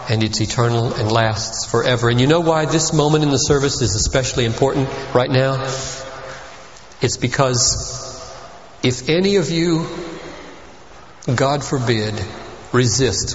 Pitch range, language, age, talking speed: 110-140 Hz, English, 40-59, 130 wpm